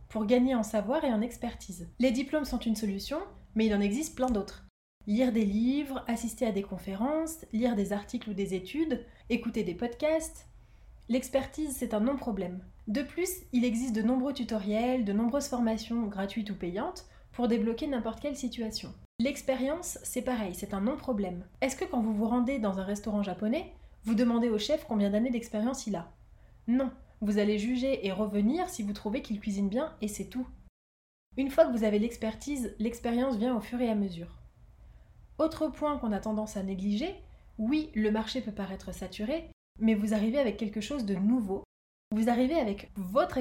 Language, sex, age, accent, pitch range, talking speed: French, female, 20-39, French, 210-265 Hz, 185 wpm